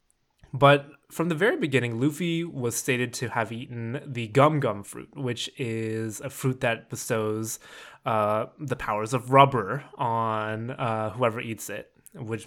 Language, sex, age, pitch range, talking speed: English, male, 20-39, 115-145 Hz, 155 wpm